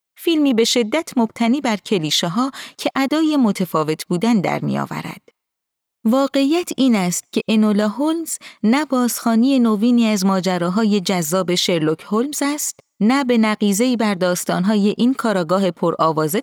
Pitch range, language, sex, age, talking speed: 180-260 Hz, Persian, female, 30-49, 135 wpm